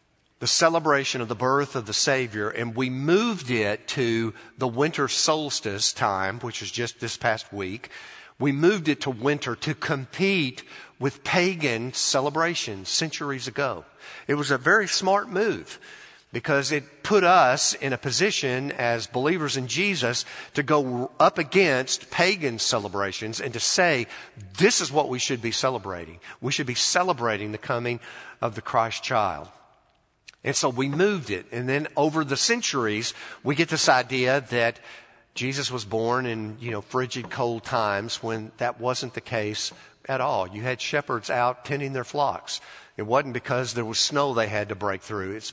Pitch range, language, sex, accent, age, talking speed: 115-145 Hz, English, male, American, 50-69, 170 wpm